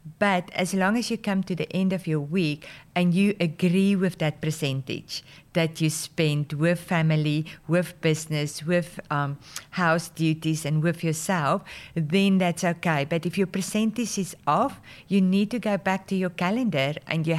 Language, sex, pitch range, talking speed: English, female, 155-195 Hz, 175 wpm